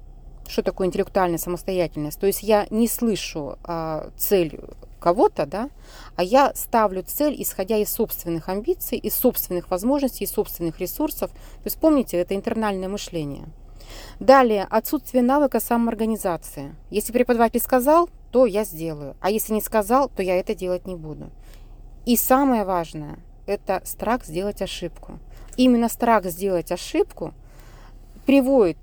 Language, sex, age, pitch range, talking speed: Russian, female, 30-49, 170-235 Hz, 135 wpm